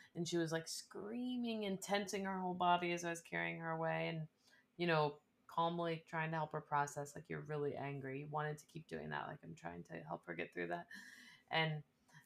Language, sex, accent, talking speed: English, female, American, 220 wpm